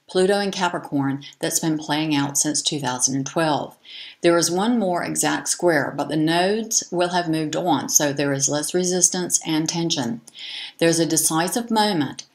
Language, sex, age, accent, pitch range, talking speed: English, female, 60-79, American, 145-180 Hz, 165 wpm